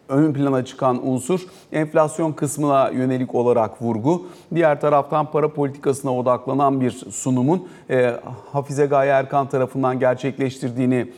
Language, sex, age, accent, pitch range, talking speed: Turkish, male, 40-59, native, 125-155 Hz, 120 wpm